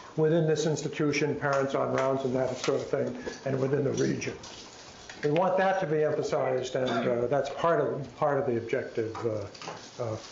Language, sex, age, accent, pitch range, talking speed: English, male, 60-79, American, 125-160 Hz, 180 wpm